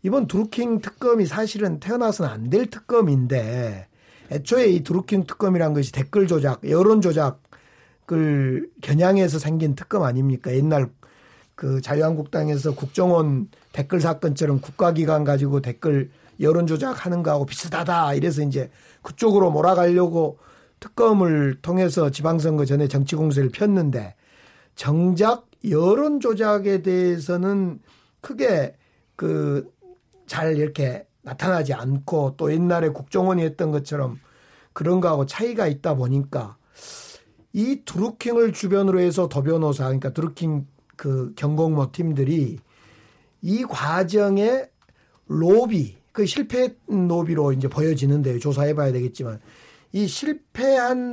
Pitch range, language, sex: 140-205 Hz, Korean, male